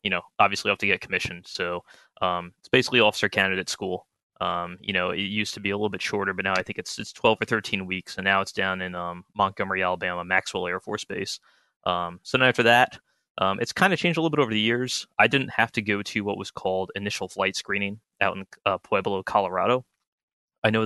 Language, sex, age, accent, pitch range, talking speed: English, male, 20-39, American, 95-110 Hz, 240 wpm